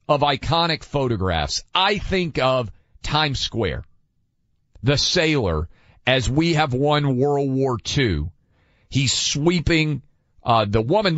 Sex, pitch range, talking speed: male, 105-145 Hz, 120 wpm